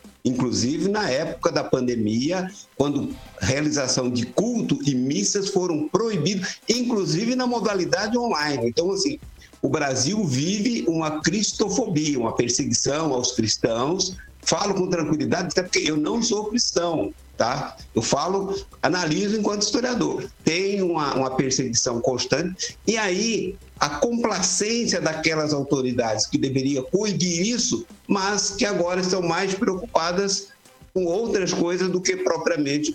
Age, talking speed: 60-79, 130 wpm